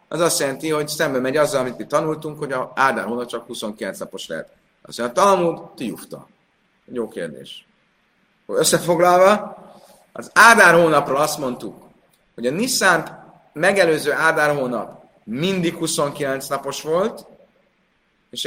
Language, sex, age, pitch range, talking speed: Hungarian, male, 30-49, 115-160 Hz, 135 wpm